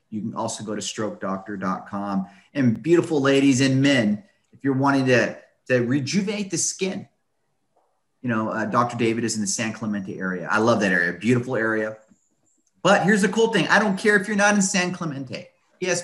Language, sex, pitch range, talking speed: English, male, 110-145 Hz, 200 wpm